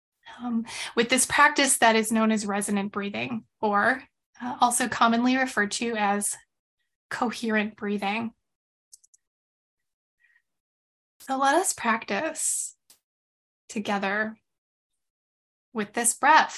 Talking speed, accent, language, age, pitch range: 100 wpm, American, English, 20-39, 215-260 Hz